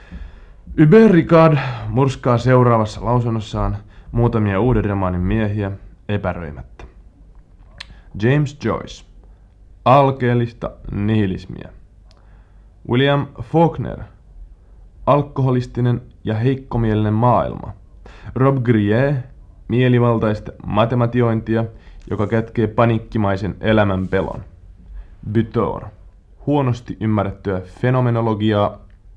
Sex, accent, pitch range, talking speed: male, native, 95-115 Hz, 65 wpm